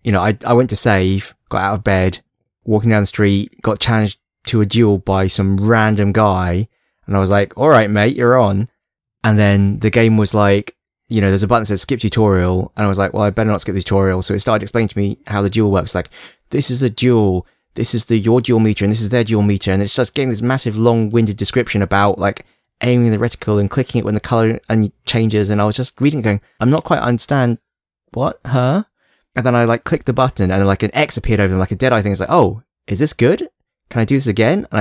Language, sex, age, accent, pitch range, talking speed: English, male, 20-39, British, 100-125 Hz, 260 wpm